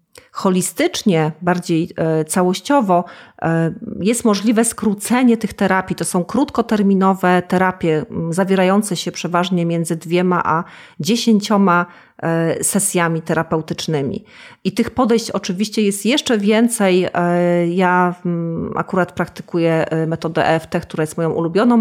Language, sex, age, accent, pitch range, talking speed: Polish, female, 40-59, native, 165-200 Hz, 100 wpm